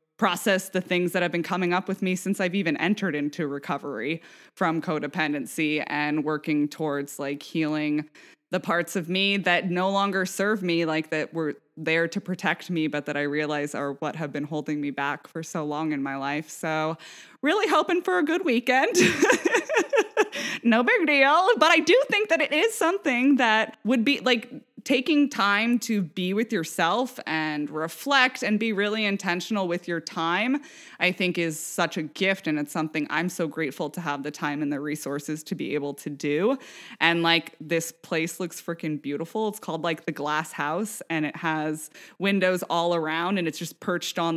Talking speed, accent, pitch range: 190 wpm, American, 155-200 Hz